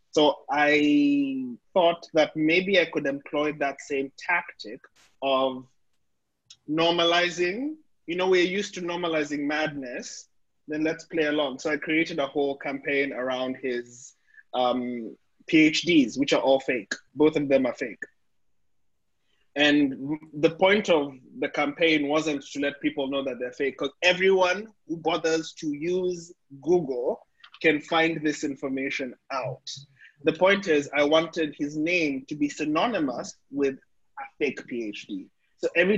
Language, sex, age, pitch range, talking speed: English, male, 20-39, 140-170 Hz, 140 wpm